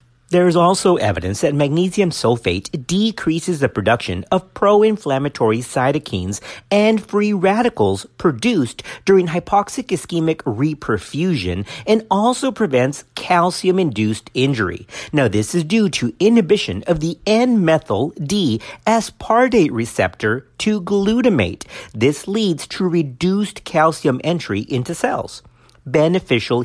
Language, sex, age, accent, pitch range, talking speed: English, male, 50-69, American, 125-205 Hz, 105 wpm